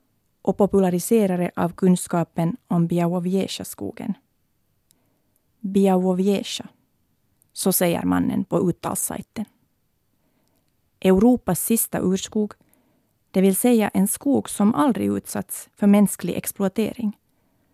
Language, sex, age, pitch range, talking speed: Swedish, female, 30-49, 175-210 Hz, 90 wpm